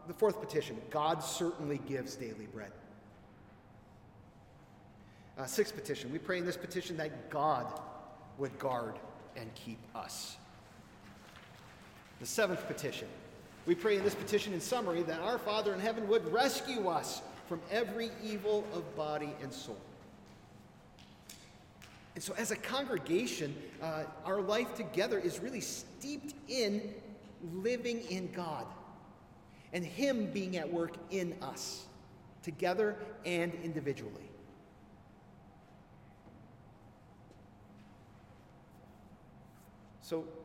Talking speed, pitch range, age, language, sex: 110 wpm, 145-215 Hz, 40-59, English, male